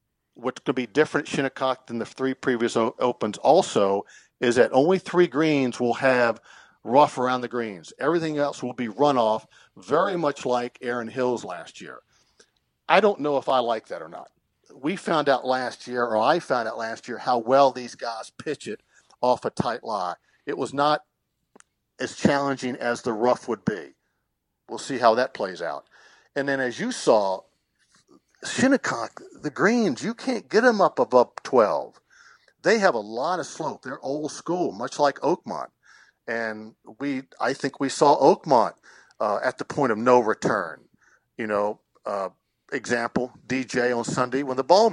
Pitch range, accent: 120-150 Hz, American